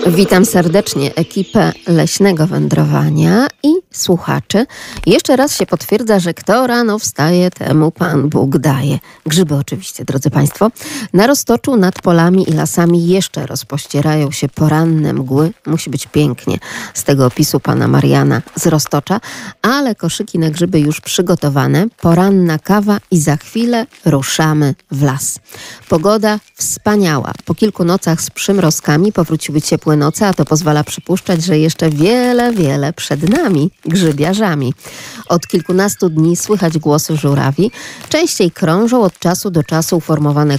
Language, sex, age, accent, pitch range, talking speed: Polish, female, 40-59, native, 150-200 Hz, 135 wpm